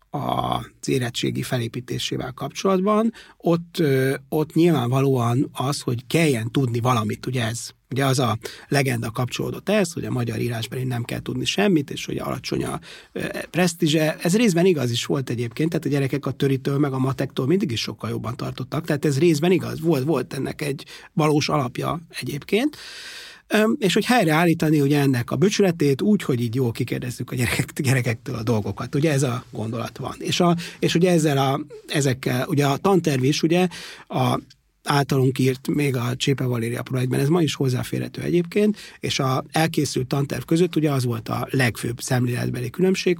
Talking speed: 170 wpm